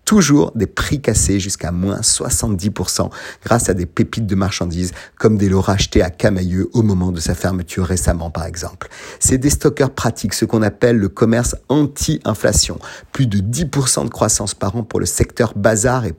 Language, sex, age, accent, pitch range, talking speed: French, male, 50-69, French, 95-120 Hz, 180 wpm